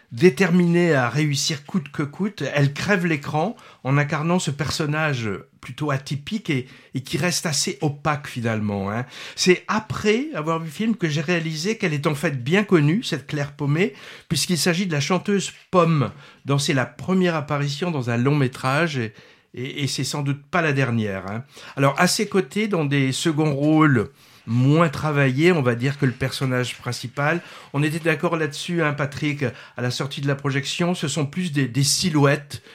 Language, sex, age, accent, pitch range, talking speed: French, male, 60-79, French, 135-170 Hz, 185 wpm